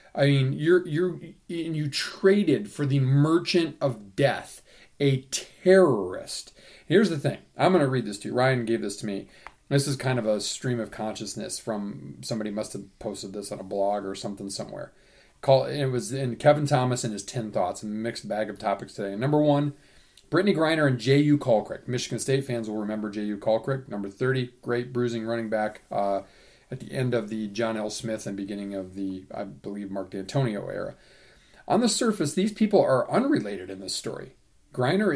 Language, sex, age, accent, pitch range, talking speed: English, male, 40-59, American, 110-150 Hz, 195 wpm